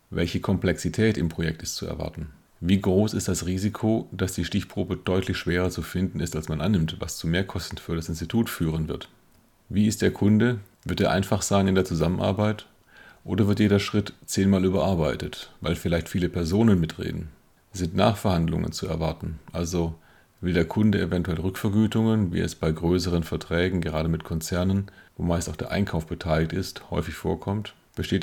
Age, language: 40-59, German